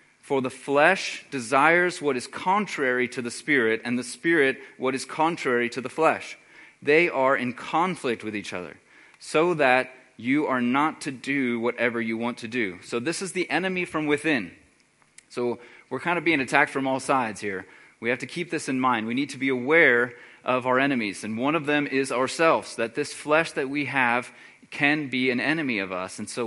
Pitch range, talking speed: 115-145 Hz, 205 wpm